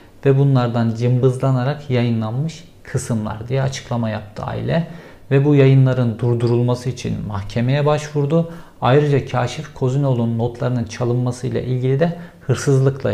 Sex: male